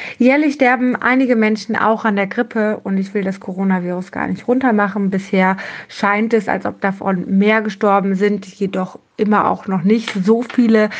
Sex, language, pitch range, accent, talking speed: female, German, 195-225 Hz, German, 175 wpm